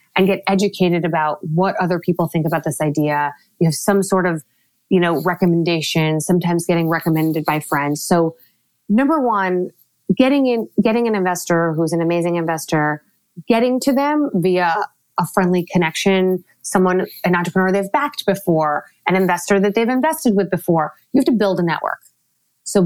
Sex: female